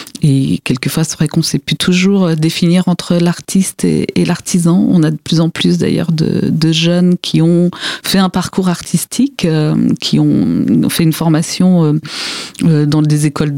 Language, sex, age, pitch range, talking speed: French, female, 50-69, 155-180 Hz, 175 wpm